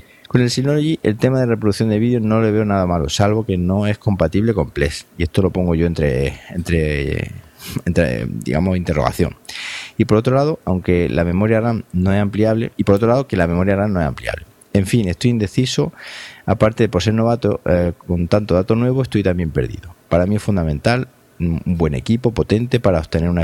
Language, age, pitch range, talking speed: Spanish, 30-49, 85-110 Hz, 205 wpm